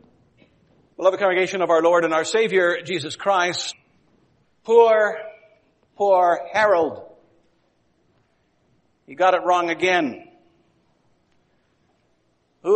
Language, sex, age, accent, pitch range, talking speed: English, male, 60-79, American, 165-210 Hz, 95 wpm